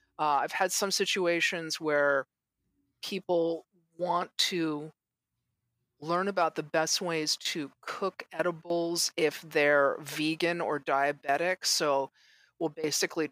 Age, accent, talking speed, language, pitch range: 40-59, American, 115 wpm, English, 145-175 Hz